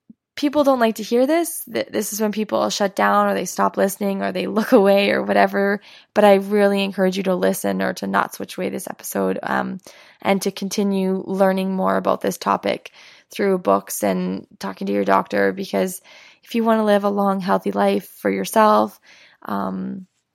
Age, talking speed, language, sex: 10-29, 190 wpm, English, female